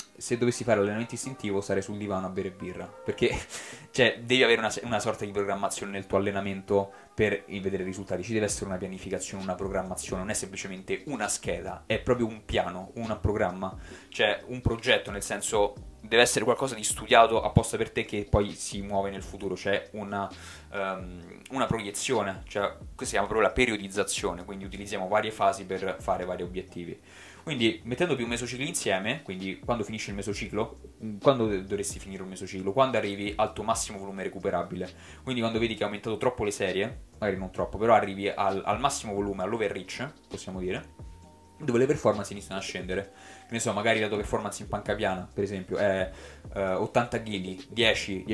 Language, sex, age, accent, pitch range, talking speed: Italian, male, 20-39, native, 95-110 Hz, 190 wpm